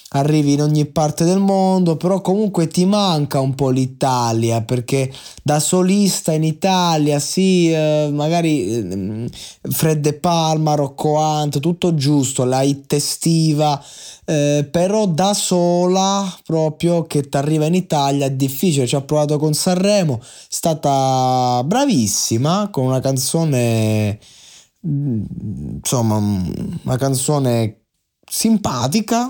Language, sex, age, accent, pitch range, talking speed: Italian, male, 20-39, native, 125-170 Hz, 115 wpm